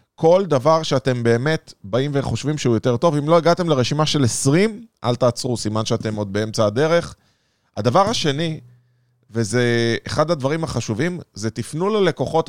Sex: male